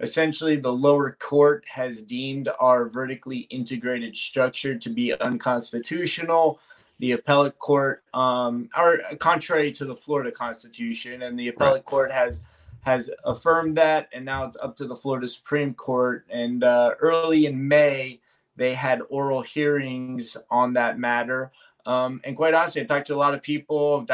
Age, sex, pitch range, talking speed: 20-39, male, 130-155 Hz, 155 wpm